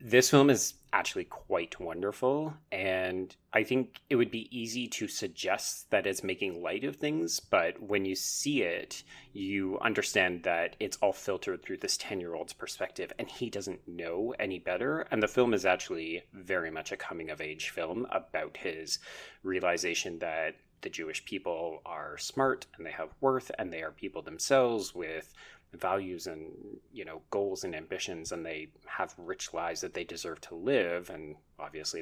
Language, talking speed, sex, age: English, 170 wpm, male, 30-49